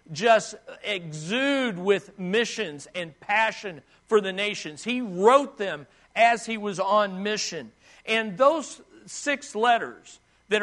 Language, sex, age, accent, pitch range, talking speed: English, male, 50-69, American, 195-250 Hz, 125 wpm